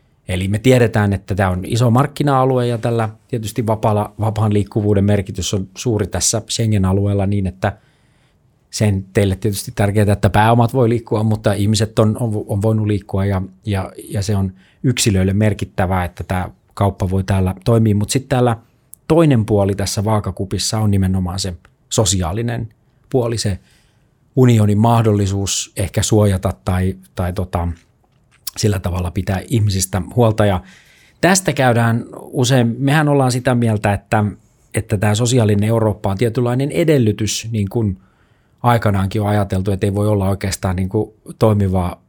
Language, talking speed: Finnish, 145 wpm